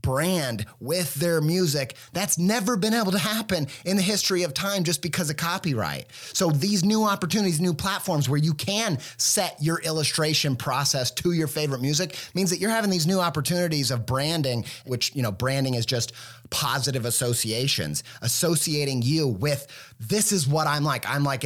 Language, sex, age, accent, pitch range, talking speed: English, male, 30-49, American, 120-160 Hz, 175 wpm